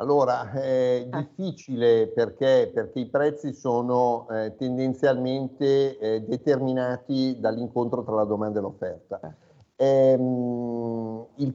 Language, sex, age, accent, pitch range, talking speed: Italian, male, 50-69, native, 115-145 Hz, 100 wpm